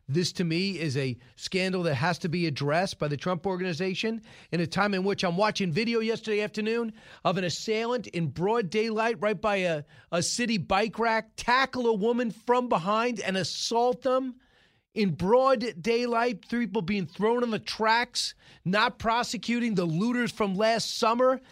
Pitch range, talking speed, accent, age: 160-215 Hz, 175 wpm, American, 40-59